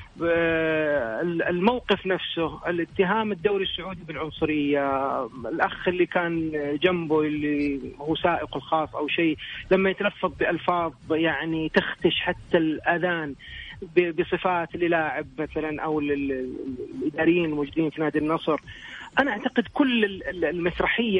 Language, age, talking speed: Arabic, 30-49, 100 wpm